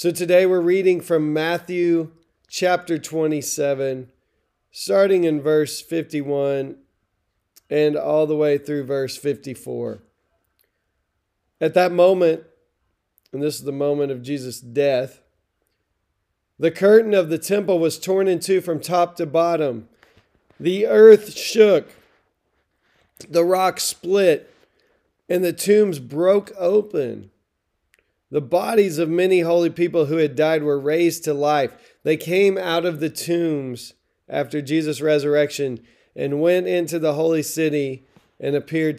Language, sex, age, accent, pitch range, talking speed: English, male, 40-59, American, 140-175 Hz, 130 wpm